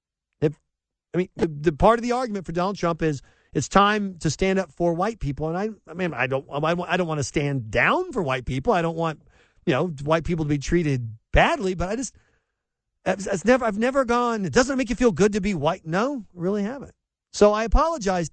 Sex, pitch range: male, 135-200 Hz